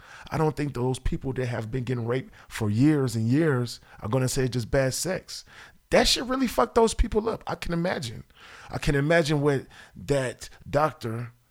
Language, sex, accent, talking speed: English, male, American, 190 wpm